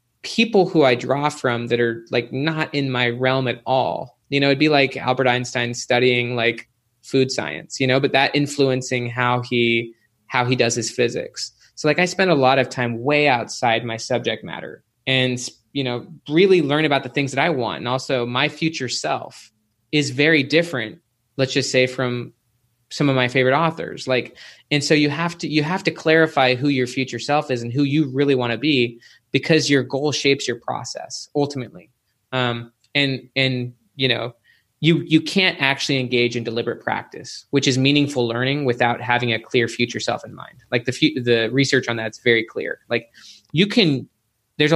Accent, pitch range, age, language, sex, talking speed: American, 120-140 Hz, 20-39, English, male, 195 wpm